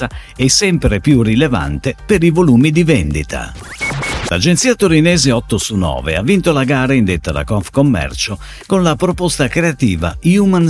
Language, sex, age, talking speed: Italian, male, 50-69, 145 wpm